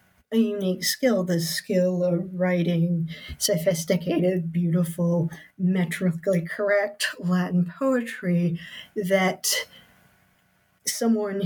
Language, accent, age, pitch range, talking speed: English, American, 40-59, 175-210 Hz, 80 wpm